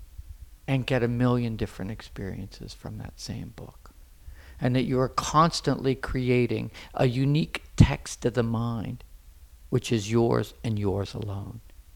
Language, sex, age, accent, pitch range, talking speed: English, male, 50-69, American, 80-125 Hz, 140 wpm